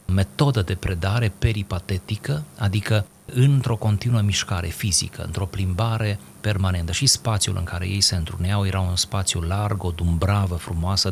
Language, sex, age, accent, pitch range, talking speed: Romanian, male, 30-49, native, 95-130 Hz, 135 wpm